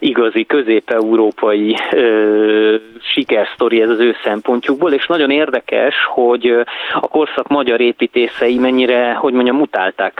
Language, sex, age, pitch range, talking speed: Hungarian, male, 30-49, 110-135 Hz, 120 wpm